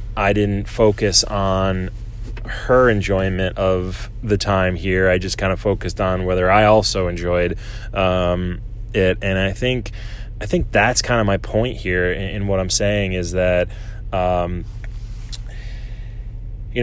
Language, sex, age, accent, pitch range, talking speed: English, male, 20-39, American, 95-110 Hz, 150 wpm